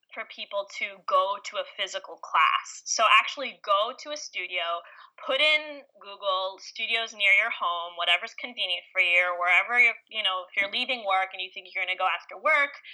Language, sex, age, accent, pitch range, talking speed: English, female, 20-39, American, 200-290 Hz, 200 wpm